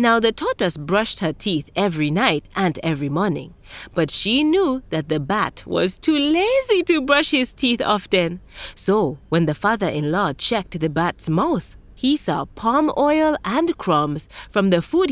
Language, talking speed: English, 165 wpm